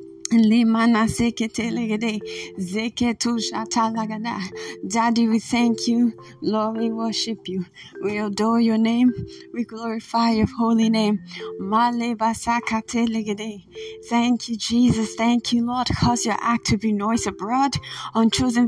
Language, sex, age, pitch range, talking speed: English, female, 20-39, 220-245 Hz, 105 wpm